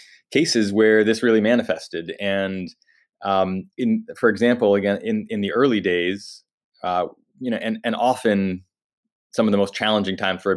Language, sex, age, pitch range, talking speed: English, male, 20-39, 100-120 Hz, 170 wpm